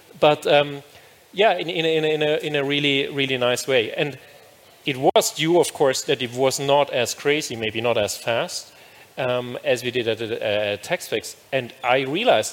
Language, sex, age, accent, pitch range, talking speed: English, male, 40-59, German, 125-150 Hz, 185 wpm